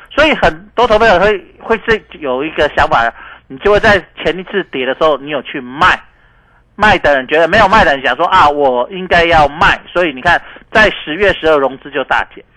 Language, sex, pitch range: Chinese, male, 180-275 Hz